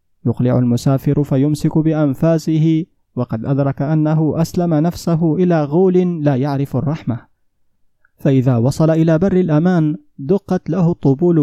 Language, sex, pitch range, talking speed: Arabic, male, 140-170 Hz, 115 wpm